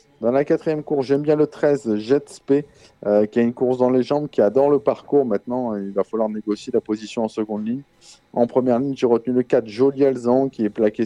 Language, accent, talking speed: French, French, 235 wpm